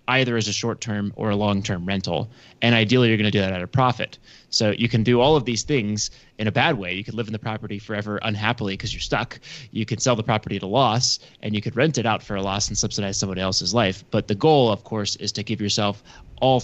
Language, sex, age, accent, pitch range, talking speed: English, male, 20-39, American, 100-125 Hz, 260 wpm